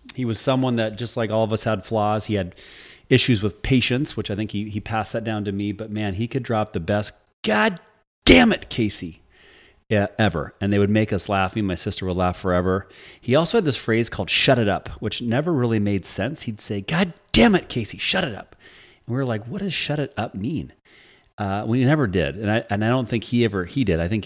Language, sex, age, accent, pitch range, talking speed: English, male, 30-49, American, 95-115 Hz, 245 wpm